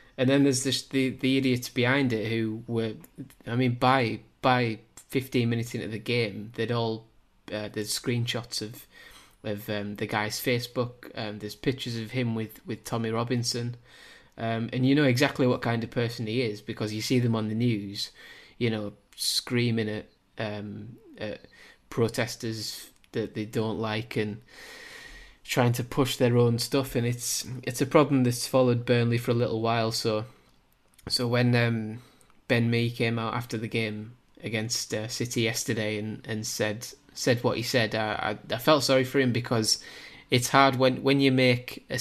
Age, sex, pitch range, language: 20-39, male, 110-125 Hz, English